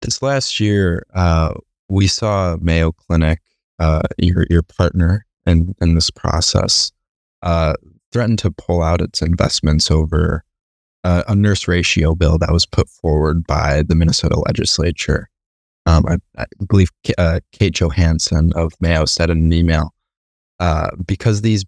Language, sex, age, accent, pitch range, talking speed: English, male, 20-39, American, 80-95 Hz, 150 wpm